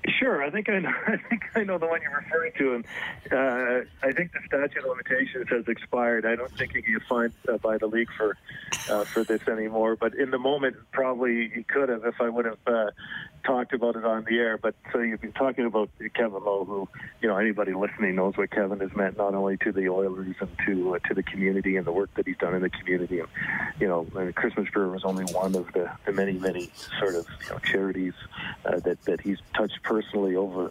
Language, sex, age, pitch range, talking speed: English, male, 40-59, 95-115 Hz, 240 wpm